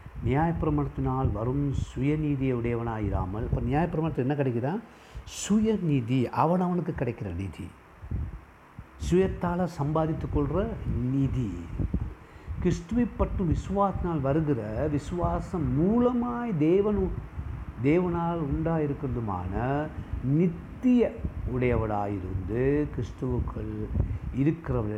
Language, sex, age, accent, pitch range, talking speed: Tamil, male, 60-79, native, 105-155 Hz, 70 wpm